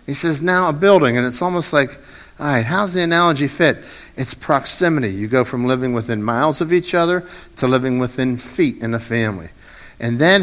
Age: 50-69